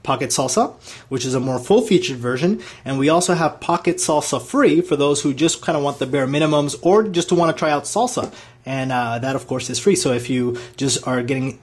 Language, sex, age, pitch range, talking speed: English, male, 30-49, 130-175 Hz, 235 wpm